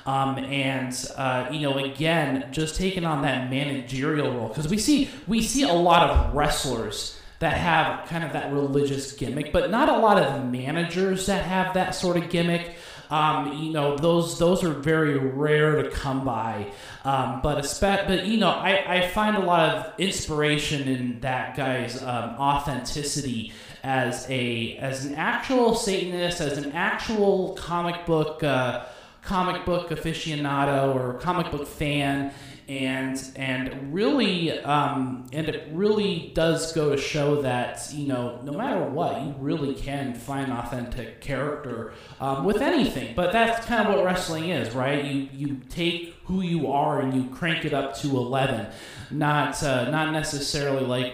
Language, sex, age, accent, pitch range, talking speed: English, male, 30-49, American, 130-170 Hz, 165 wpm